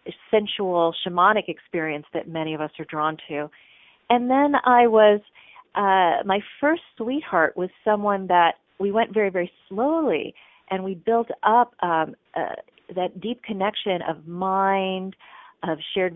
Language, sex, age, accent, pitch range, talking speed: English, female, 40-59, American, 170-210 Hz, 145 wpm